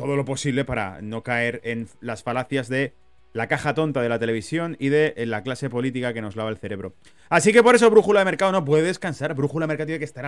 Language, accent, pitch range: Spanish, Spanish, 120-170 Hz